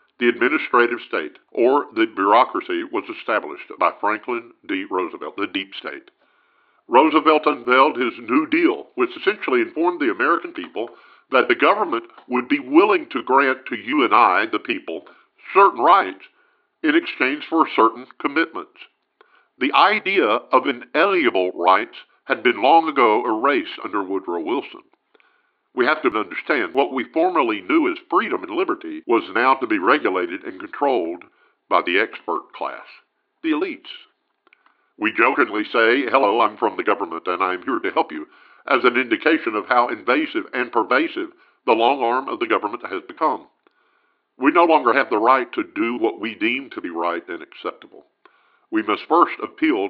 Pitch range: 325-370 Hz